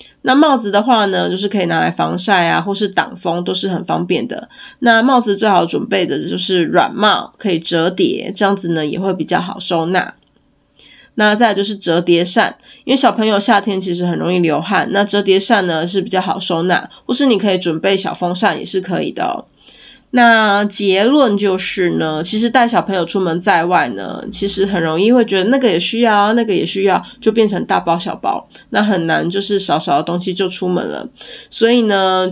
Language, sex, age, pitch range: Chinese, female, 20-39, 175-210 Hz